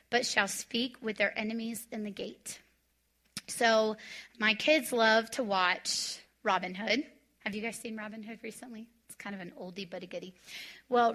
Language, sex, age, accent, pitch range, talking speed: English, female, 30-49, American, 205-250 Hz, 180 wpm